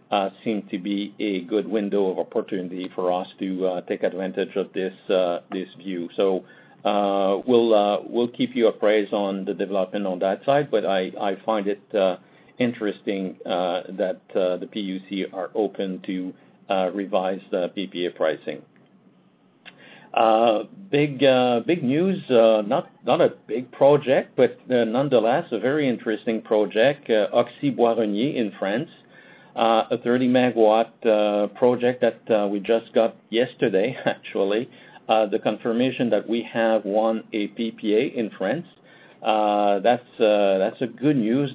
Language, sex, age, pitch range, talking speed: English, male, 50-69, 100-115 Hz, 155 wpm